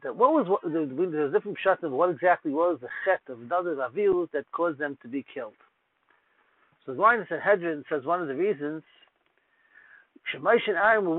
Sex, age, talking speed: male, 60-79, 175 wpm